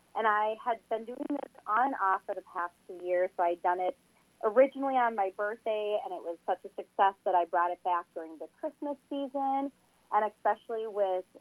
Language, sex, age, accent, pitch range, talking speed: English, female, 30-49, American, 185-225 Hz, 210 wpm